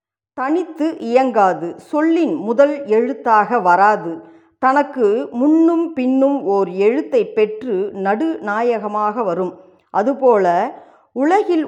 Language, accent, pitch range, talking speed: Tamil, native, 195-275 Hz, 80 wpm